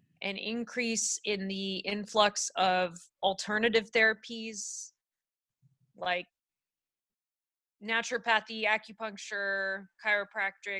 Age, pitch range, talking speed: 20-39, 200-240 Hz, 65 wpm